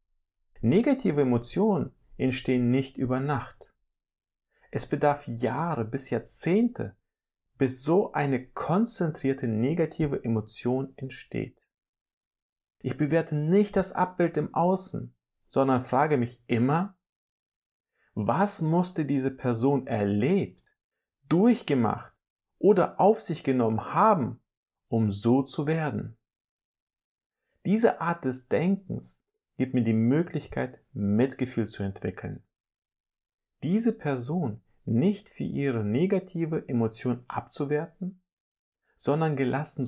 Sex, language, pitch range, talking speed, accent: male, German, 115-160 Hz, 100 wpm, German